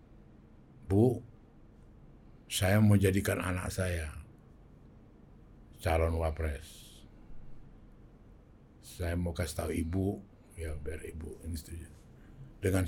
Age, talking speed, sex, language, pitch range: 60-79, 85 wpm, male, Indonesian, 85-110 Hz